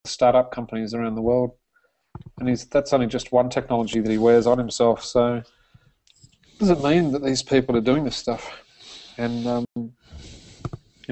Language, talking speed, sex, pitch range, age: English, 175 wpm, male, 110-125 Hz, 30-49